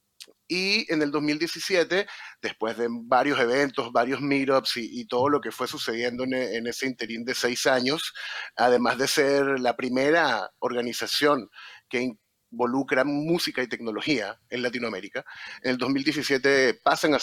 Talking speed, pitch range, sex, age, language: 140 wpm, 120-150 Hz, male, 30-49, Spanish